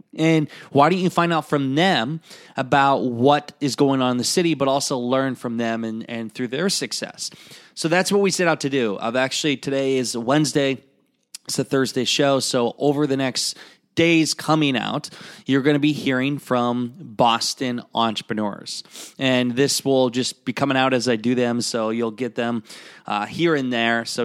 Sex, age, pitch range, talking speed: male, 20-39, 115-145 Hz, 195 wpm